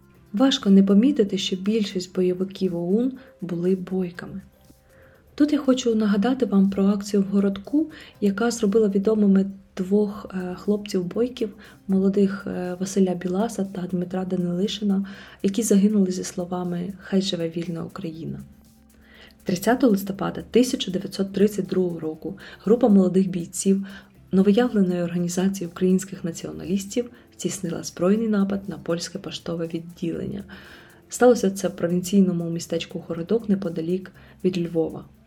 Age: 20-39